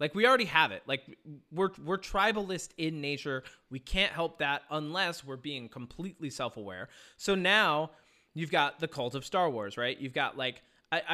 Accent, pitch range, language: American, 140-195 Hz, English